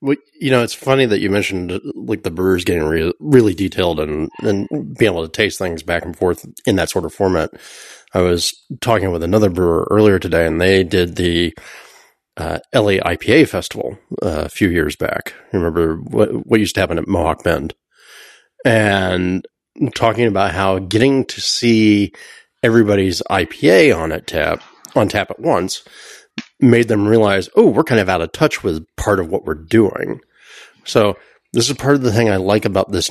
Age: 30-49